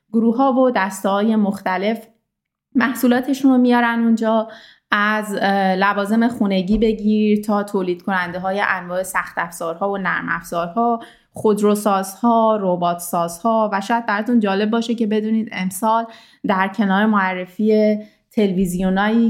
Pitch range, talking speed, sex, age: 195-230 Hz, 120 wpm, female, 20-39